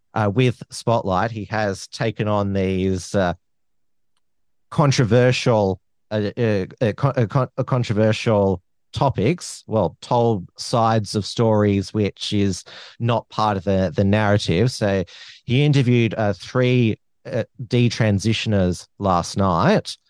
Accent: Australian